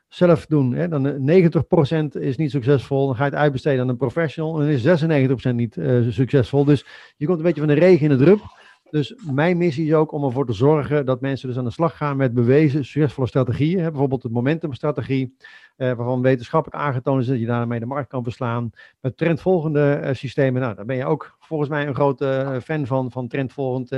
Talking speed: 210 wpm